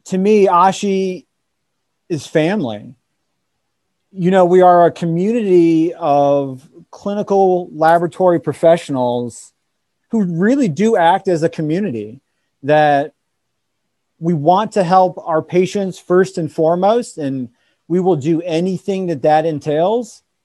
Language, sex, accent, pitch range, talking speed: English, male, American, 145-180 Hz, 115 wpm